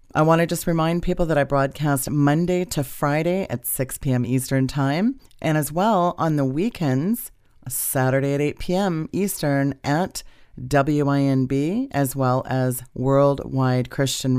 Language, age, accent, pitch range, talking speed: English, 40-59, American, 130-150 Hz, 145 wpm